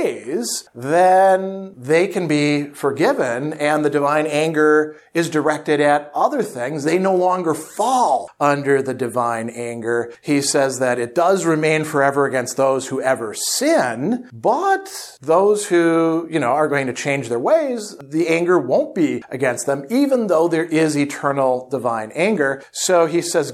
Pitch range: 140-190 Hz